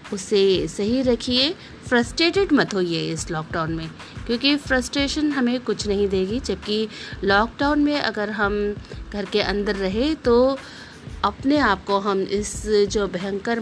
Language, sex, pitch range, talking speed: Hindi, female, 200-255 Hz, 140 wpm